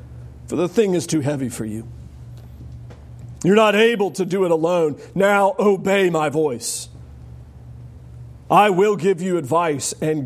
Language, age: English, 40-59